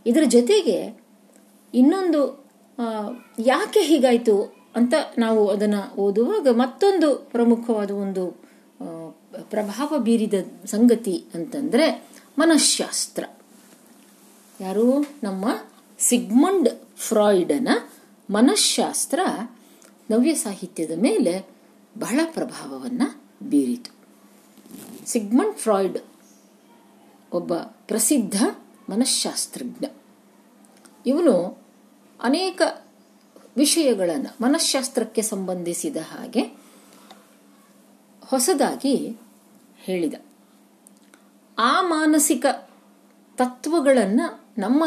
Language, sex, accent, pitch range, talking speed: Kannada, female, native, 215-285 Hz, 65 wpm